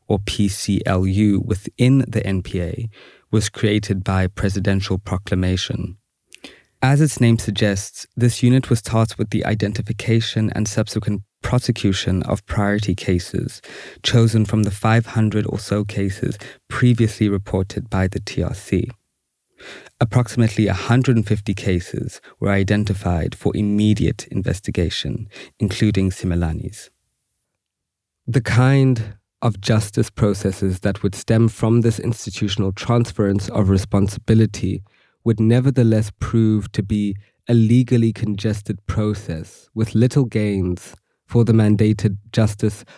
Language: English